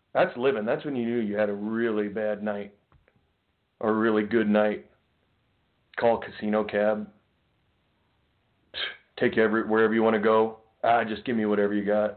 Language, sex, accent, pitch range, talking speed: English, male, American, 105-115 Hz, 170 wpm